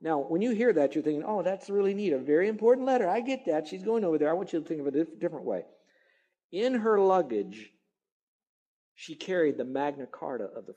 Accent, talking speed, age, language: American, 235 wpm, 50-69, English